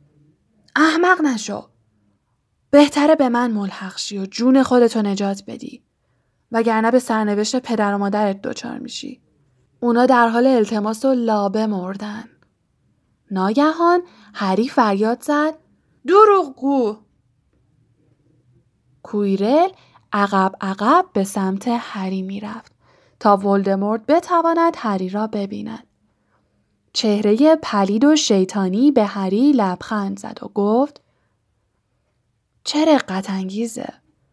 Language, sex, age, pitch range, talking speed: Persian, female, 10-29, 195-260 Hz, 105 wpm